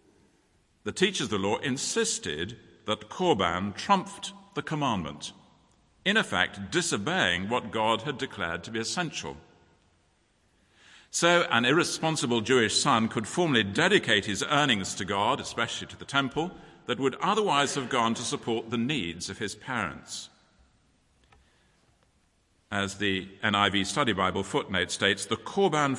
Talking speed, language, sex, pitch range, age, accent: 135 wpm, English, male, 100-150 Hz, 50-69, British